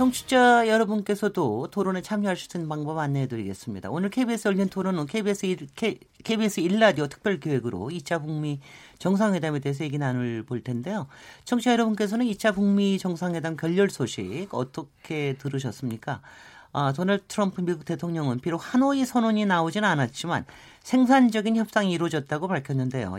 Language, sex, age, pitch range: Korean, male, 40-59, 135-205 Hz